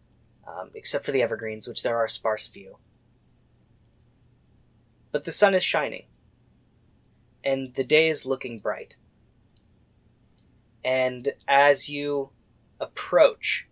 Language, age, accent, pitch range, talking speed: English, 20-39, American, 110-140 Hz, 115 wpm